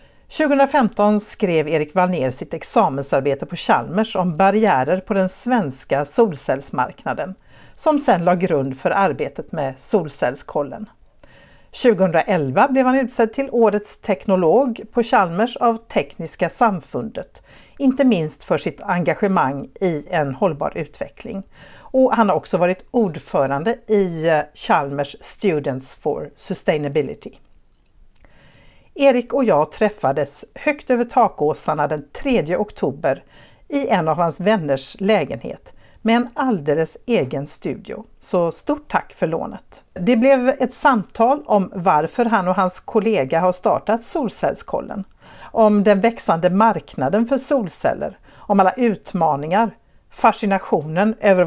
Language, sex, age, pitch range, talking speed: Swedish, female, 60-79, 165-240 Hz, 120 wpm